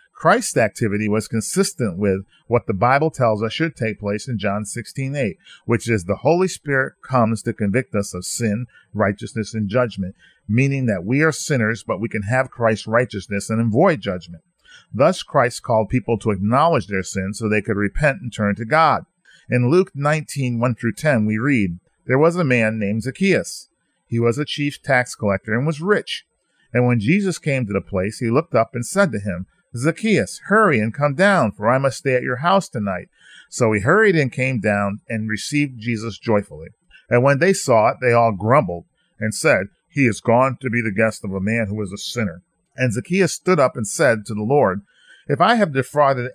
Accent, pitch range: American, 110-145 Hz